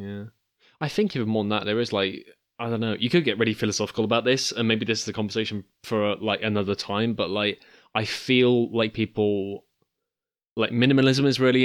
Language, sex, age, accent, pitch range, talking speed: English, male, 20-39, British, 105-120 Hz, 210 wpm